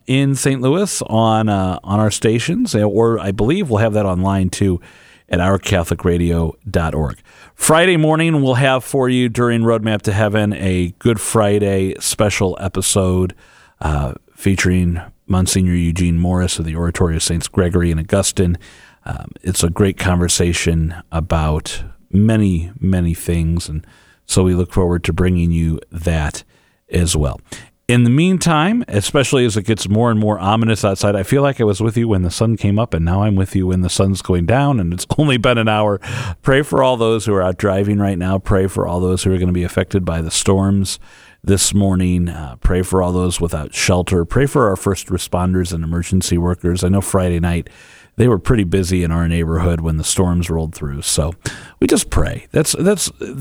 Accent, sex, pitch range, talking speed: American, male, 90-115 Hz, 190 wpm